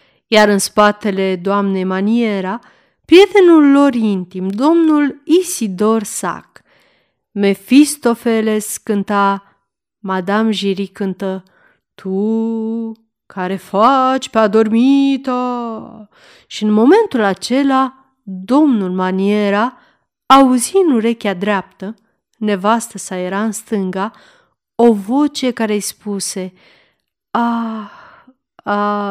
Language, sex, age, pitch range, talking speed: Romanian, female, 30-49, 195-260 Hz, 85 wpm